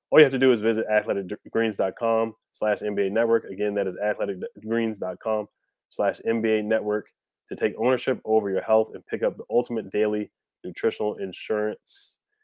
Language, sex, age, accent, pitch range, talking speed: English, male, 20-39, American, 100-120 Hz, 155 wpm